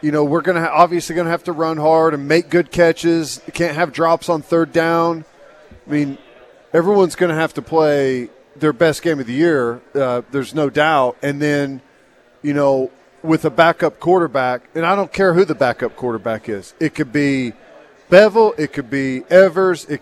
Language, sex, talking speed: English, male, 200 wpm